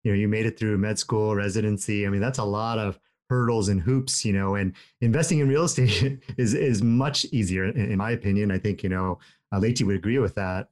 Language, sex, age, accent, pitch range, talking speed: English, male, 30-49, American, 105-135 Hz, 240 wpm